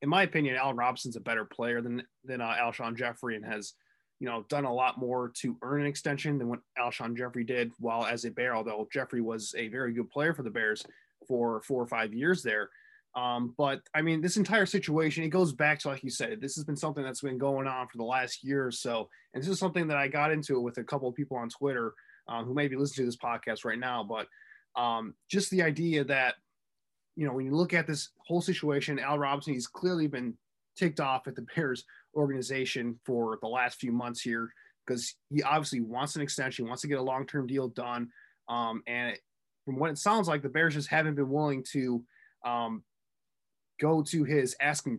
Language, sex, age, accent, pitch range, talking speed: English, male, 20-39, American, 120-150 Hz, 225 wpm